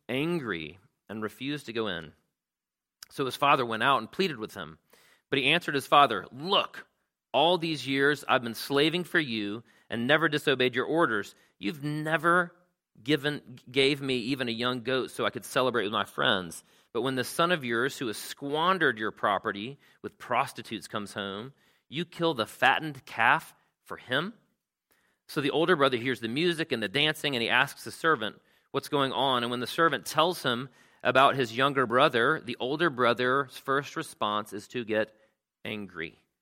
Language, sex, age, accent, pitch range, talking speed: English, male, 40-59, American, 115-150 Hz, 180 wpm